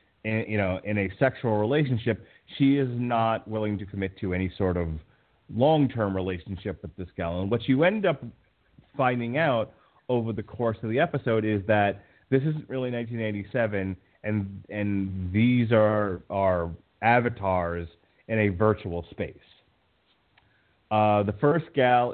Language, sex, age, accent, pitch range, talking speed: English, male, 30-49, American, 95-115 Hz, 145 wpm